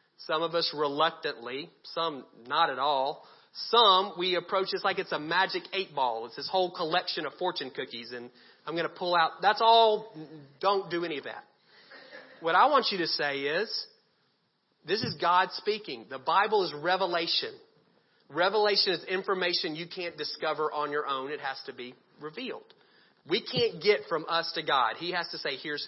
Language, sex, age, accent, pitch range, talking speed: English, male, 40-59, American, 145-195 Hz, 185 wpm